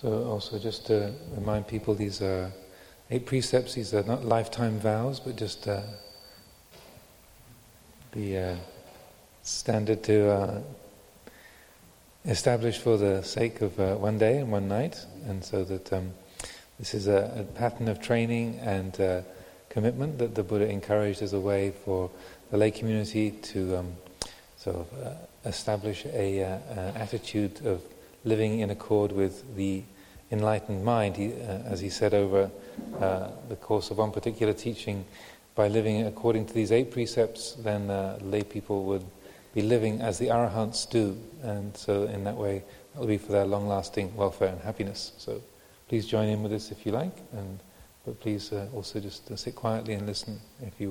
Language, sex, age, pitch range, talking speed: English, male, 40-59, 100-110 Hz, 170 wpm